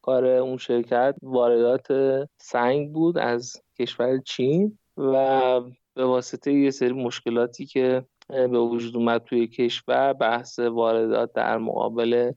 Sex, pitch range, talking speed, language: male, 125-160 Hz, 120 wpm, Persian